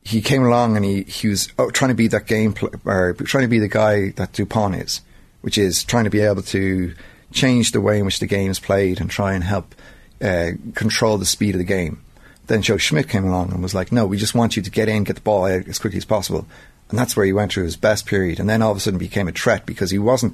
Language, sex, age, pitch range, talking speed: English, male, 30-49, 95-110 Hz, 260 wpm